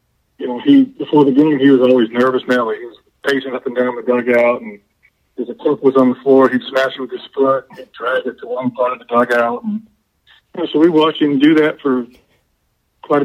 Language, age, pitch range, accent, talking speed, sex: English, 50-69, 125-155 Hz, American, 245 wpm, male